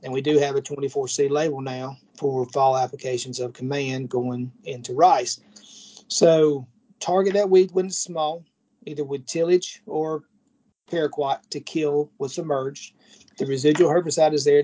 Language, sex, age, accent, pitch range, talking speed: English, male, 40-59, American, 135-180 Hz, 155 wpm